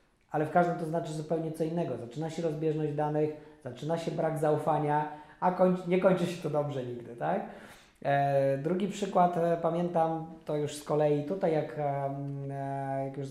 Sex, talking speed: male, 175 wpm